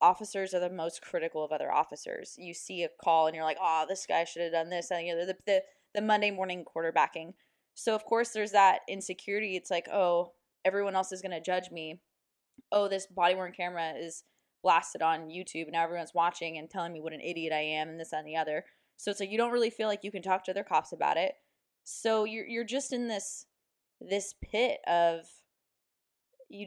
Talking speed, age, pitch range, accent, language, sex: 225 wpm, 20-39, 165-200 Hz, American, English, female